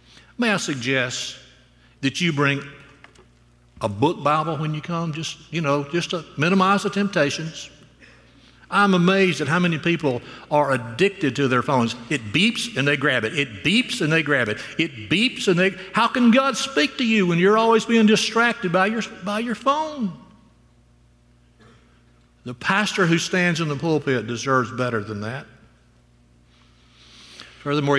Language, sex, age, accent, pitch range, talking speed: English, male, 60-79, American, 105-160 Hz, 160 wpm